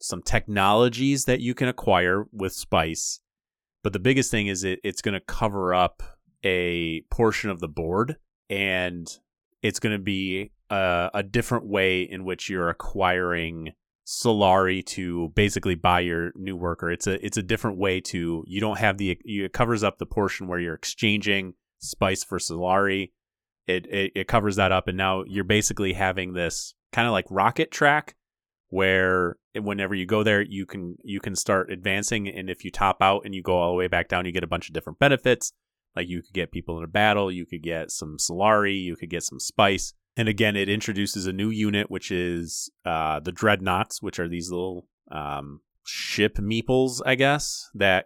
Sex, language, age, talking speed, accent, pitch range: male, English, 30-49, 190 wpm, American, 90-105 Hz